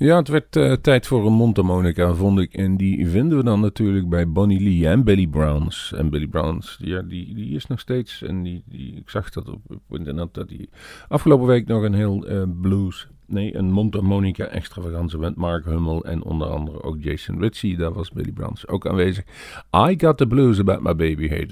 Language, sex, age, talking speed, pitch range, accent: Dutch, male, 50-69, 210 wpm, 85-110 Hz, Dutch